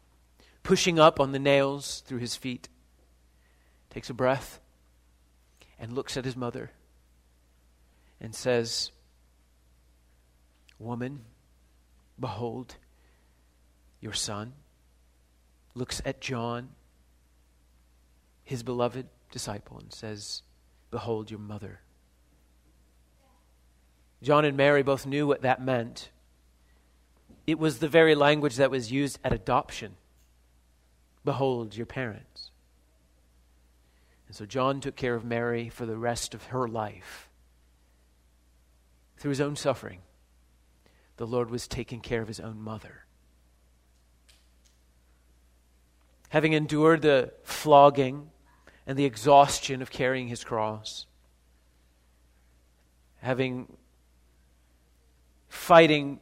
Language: English